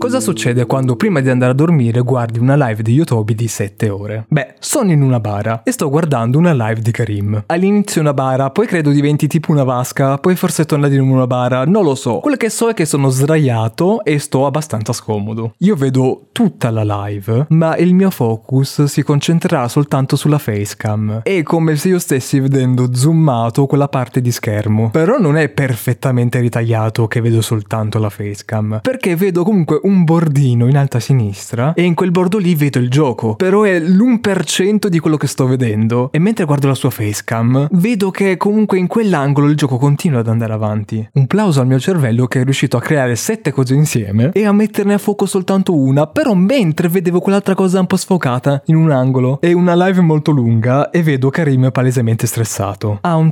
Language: Italian